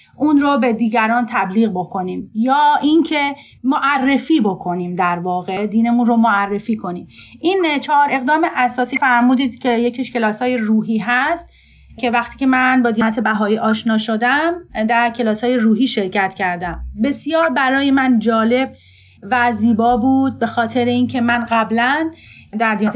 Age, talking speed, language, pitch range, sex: 30-49, 140 wpm, Persian, 230-280 Hz, female